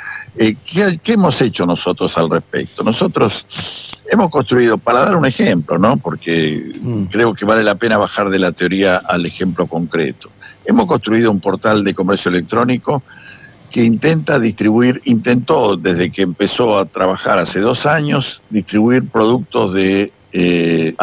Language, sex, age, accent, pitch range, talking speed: Spanish, male, 60-79, Argentinian, 95-120 Hz, 145 wpm